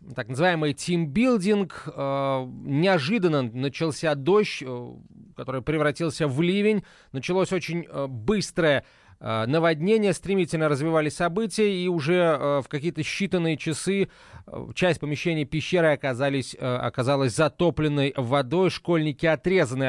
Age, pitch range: 30-49, 140-175 Hz